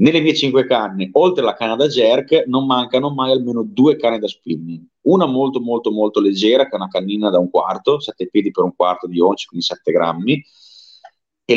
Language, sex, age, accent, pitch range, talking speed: Italian, male, 30-49, native, 95-130 Hz, 210 wpm